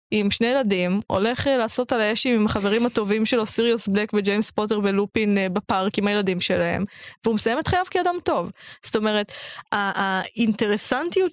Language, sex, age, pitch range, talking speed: Hebrew, female, 20-39, 200-245 Hz, 160 wpm